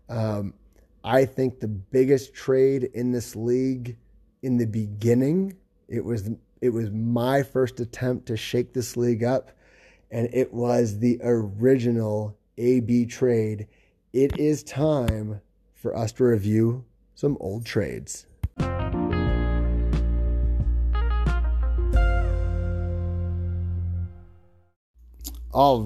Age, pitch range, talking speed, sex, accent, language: 30-49, 105-145 Hz, 100 wpm, male, American, English